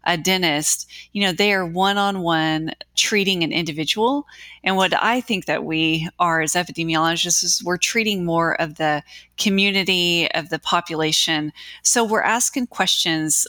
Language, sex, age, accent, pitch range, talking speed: English, female, 30-49, American, 160-200 Hz, 155 wpm